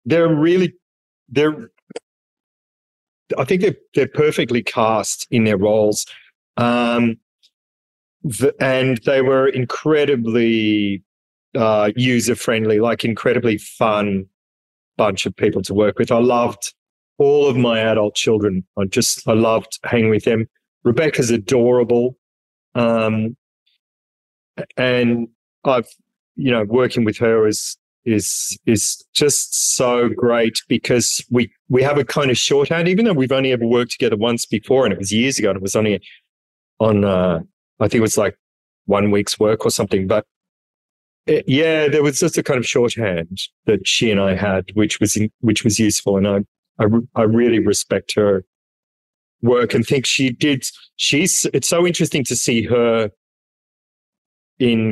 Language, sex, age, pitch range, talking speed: English, male, 30-49, 105-130 Hz, 150 wpm